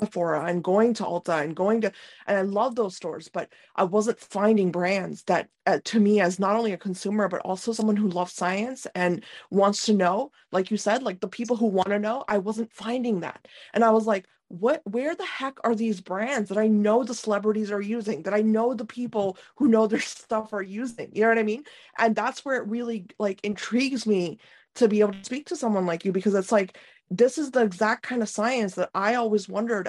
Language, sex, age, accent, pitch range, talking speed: English, female, 20-39, American, 195-235 Hz, 230 wpm